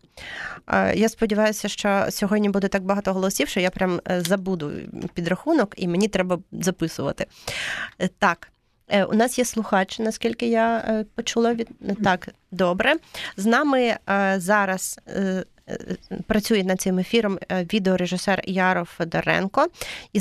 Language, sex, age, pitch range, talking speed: Ukrainian, female, 30-49, 180-215 Hz, 115 wpm